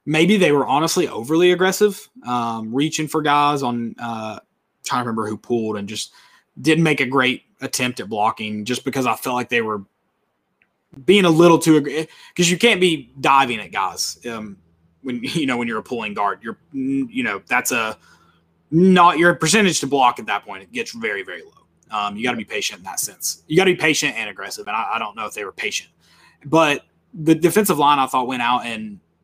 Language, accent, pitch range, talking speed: English, American, 120-170 Hz, 215 wpm